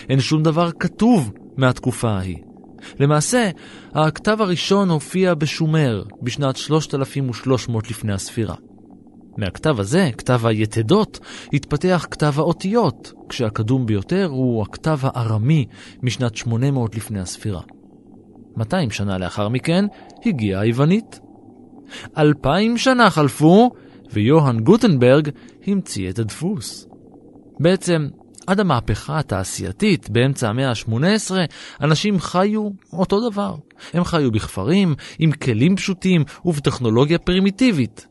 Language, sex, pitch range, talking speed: Hebrew, male, 115-180 Hz, 100 wpm